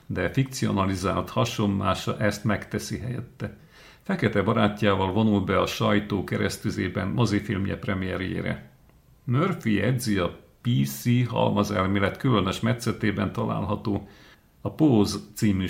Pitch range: 100-115 Hz